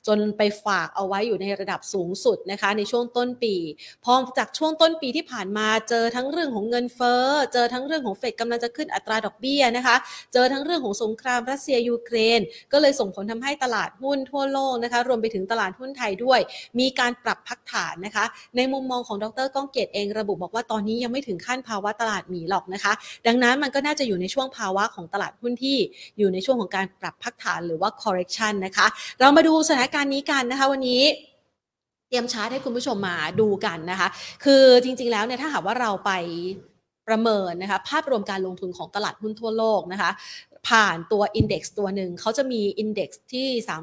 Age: 30-49